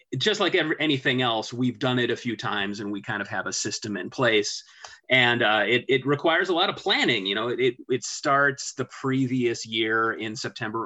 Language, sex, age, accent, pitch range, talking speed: English, male, 30-49, American, 110-140 Hz, 210 wpm